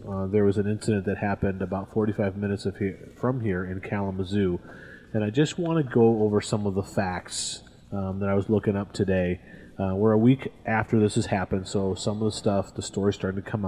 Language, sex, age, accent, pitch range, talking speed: English, male, 30-49, American, 100-120 Hz, 220 wpm